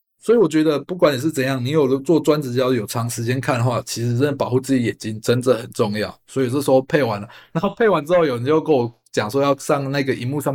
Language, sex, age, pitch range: Chinese, male, 20-39, 120-155 Hz